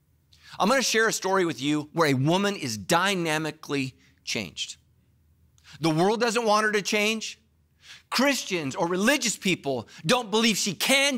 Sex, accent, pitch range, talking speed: male, American, 145-215 Hz, 150 wpm